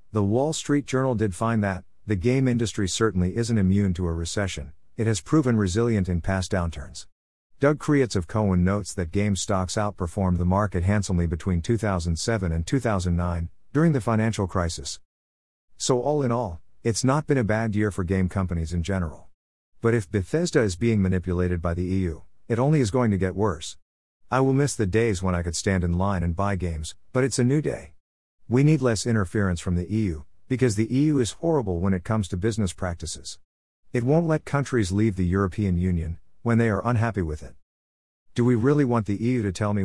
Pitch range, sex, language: 90-115 Hz, male, English